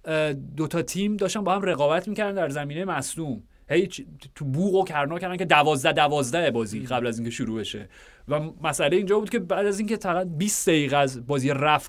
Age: 30-49